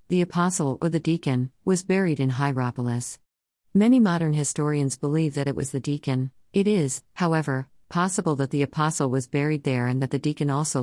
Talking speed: 185 wpm